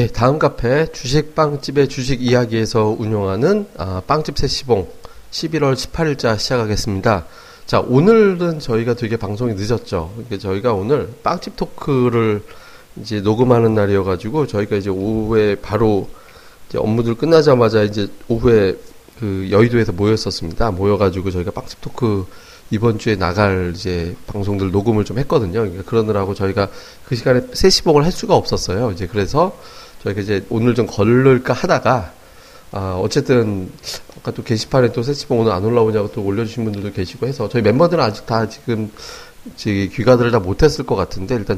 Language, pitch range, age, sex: Korean, 100-135 Hz, 30-49, male